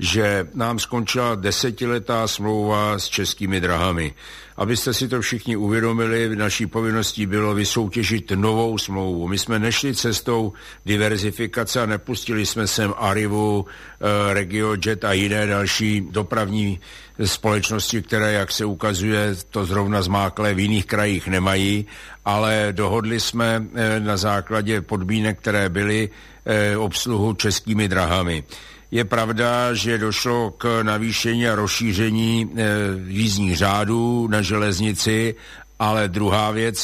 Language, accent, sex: Czech, native, male